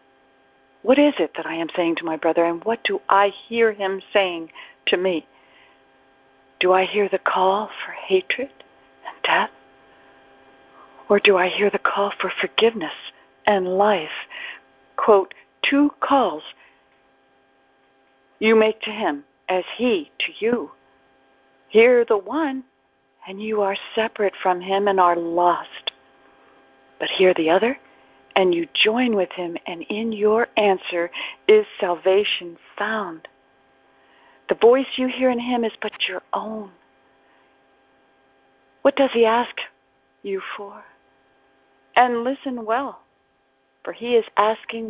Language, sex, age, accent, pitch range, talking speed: English, female, 60-79, American, 165-245 Hz, 135 wpm